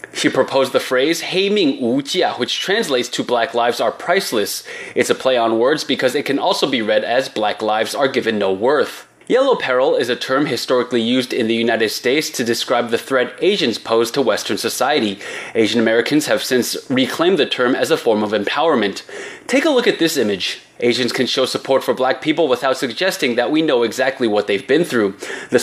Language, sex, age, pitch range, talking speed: English, male, 20-39, 120-185 Hz, 200 wpm